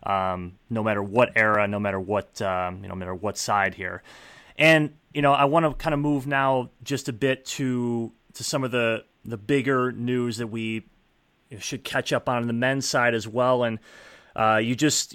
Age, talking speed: 30-49, 200 wpm